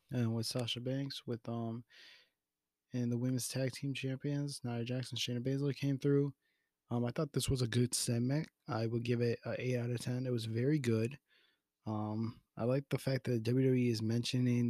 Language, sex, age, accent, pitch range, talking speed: English, male, 20-39, American, 110-130 Hz, 195 wpm